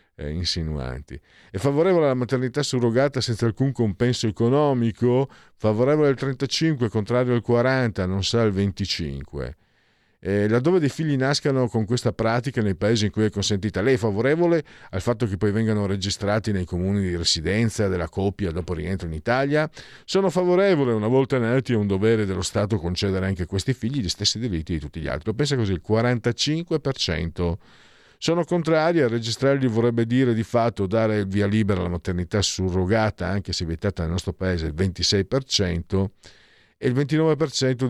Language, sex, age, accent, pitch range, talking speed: Italian, male, 50-69, native, 95-135 Hz, 165 wpm